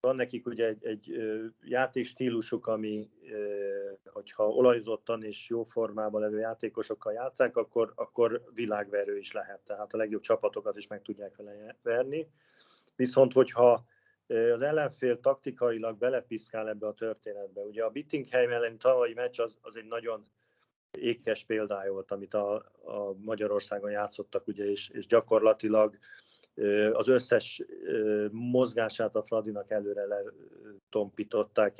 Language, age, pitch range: Hungarian, 40-59, 105-140 Hz